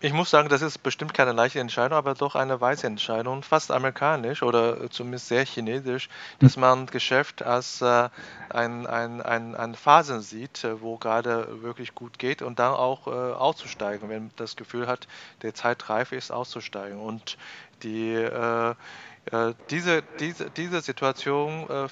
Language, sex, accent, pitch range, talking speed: German, male, German, 115-135 Hz, 160 wpm